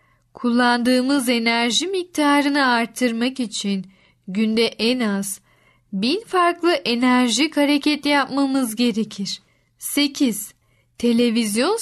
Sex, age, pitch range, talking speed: female, 10-29, 220-300 Hz, 80 wpm